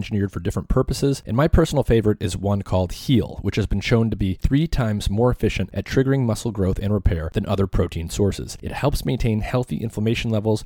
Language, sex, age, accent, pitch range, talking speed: English, male, 30-49, American, 95-120 Hz, 215 wpm